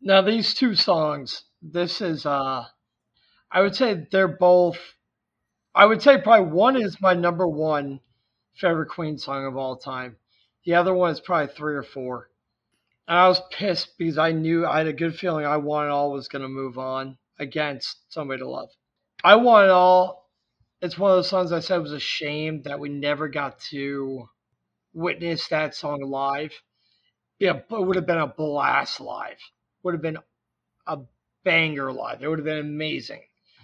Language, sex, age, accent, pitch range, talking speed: English, male, 30-49, American, 140-185 Hz, 185 wpm